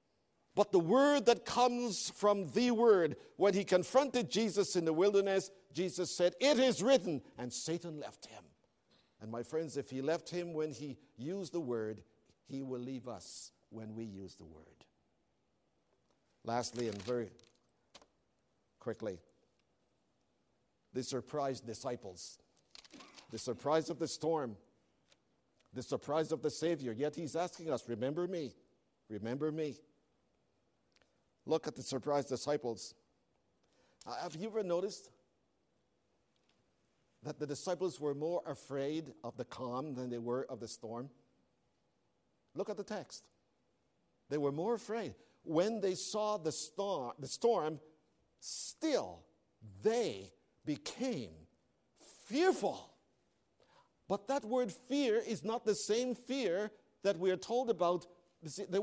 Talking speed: 130 wpm